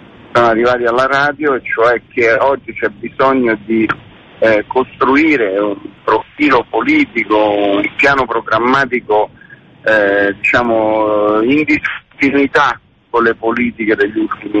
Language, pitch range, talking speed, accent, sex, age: Italian, 110-135 Hz, 110 wpm, native, male, 50-69